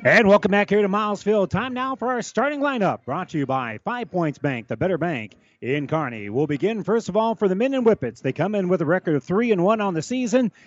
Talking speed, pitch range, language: 270 wpm, 145-205 Hz, English